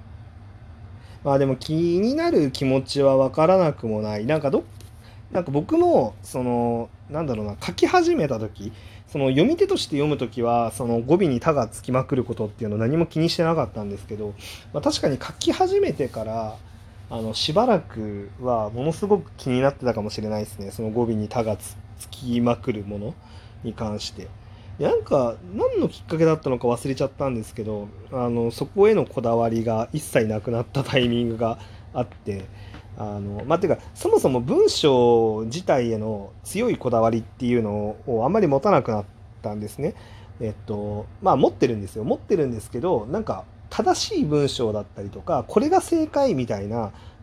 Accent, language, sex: native, Japanese, male